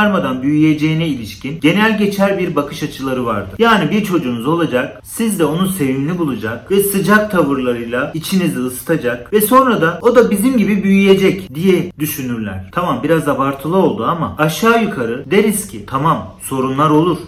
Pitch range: 140-185 Hz